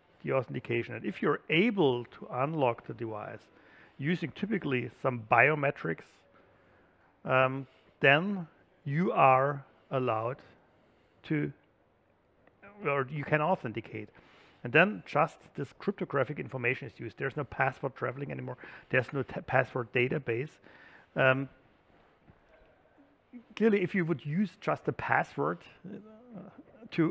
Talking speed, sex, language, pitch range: 115 wpm, male, English, 120-165 Hz